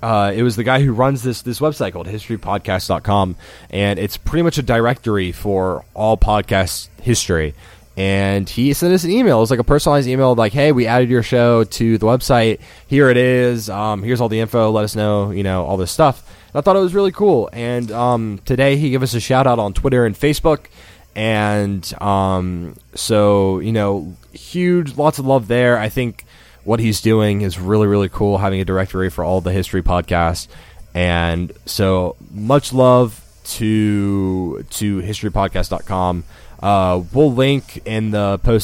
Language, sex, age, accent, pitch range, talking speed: English, male, 20-39, American, 95-125 Hz, 185 wpm